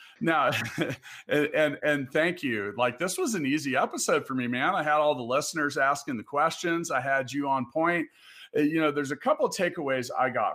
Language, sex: English, male